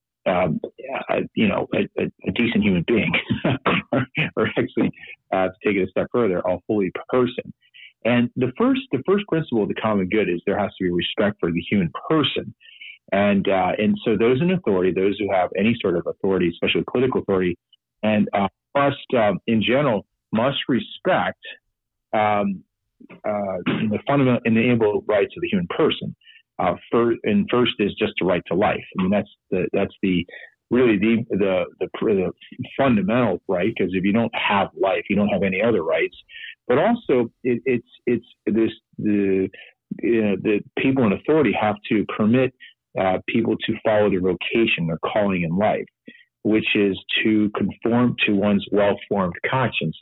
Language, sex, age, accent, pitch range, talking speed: English, male, 40-59, American, 95-130 Hz, 180 wpm